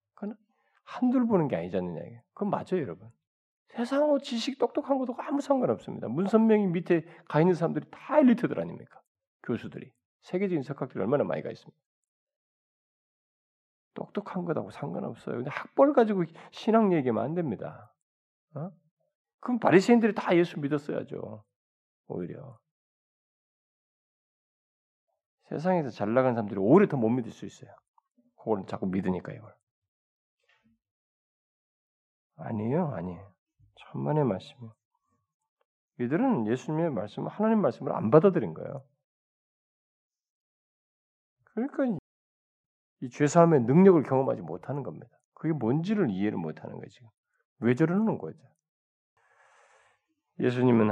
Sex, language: male, Korean